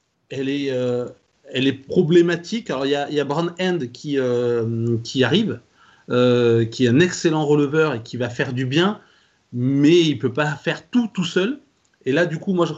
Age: 30-49